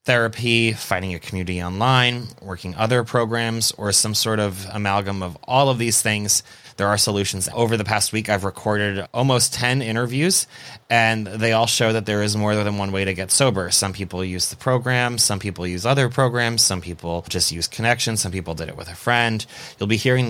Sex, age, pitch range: male, 30-49, 95-115 Hz